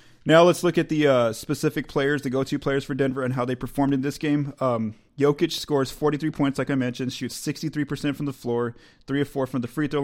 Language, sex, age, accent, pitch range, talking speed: English, male, 30-49, American, 125-150 Hz, 240 wpm